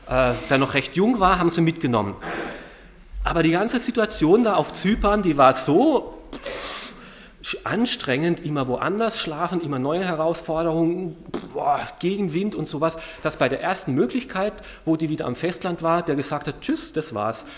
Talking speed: 155 wpm